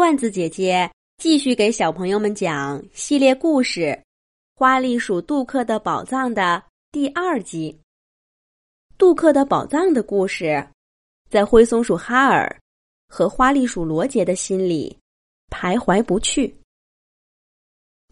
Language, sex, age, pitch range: Chinese, female, 20-39, 180-280 Hz